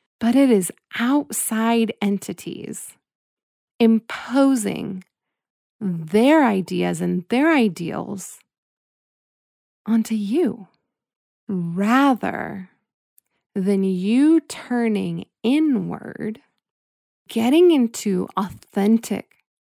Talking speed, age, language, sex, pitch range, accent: 65 wpm, 20-39, English, female, 190-240 Hz, American